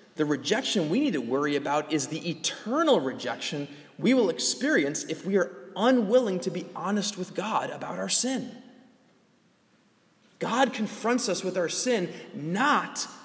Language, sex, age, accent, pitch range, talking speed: English, male, 20-39, American, 150-225 Hz, 150 wpm